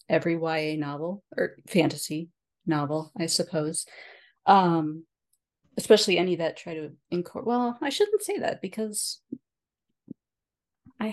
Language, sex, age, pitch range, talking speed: English, female, 30-49, 155-210 Hz, 120 wpm